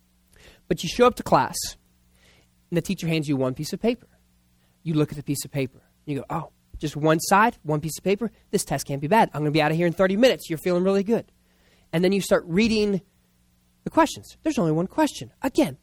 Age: 30-49